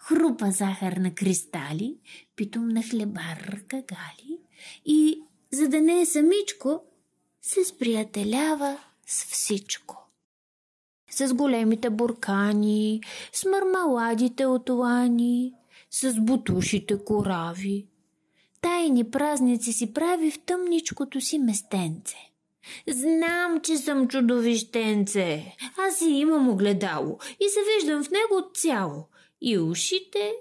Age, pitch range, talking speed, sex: 30-49, 205-315 Hz, 100 wpm, female